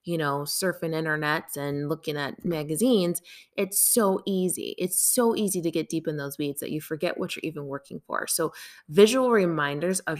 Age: 20-39